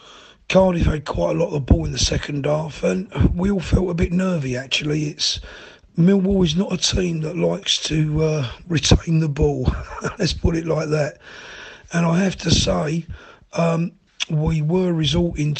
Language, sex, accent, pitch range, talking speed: English, male, British, 140-165 Hz, 180 wpm